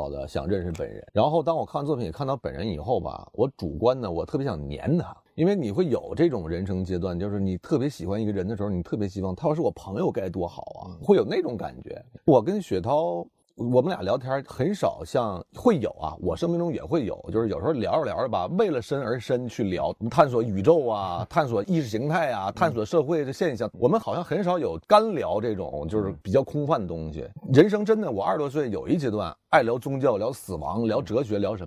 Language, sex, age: Chinese, male, 30-49